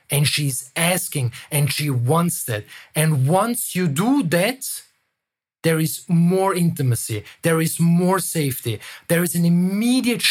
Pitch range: 140-185 Hz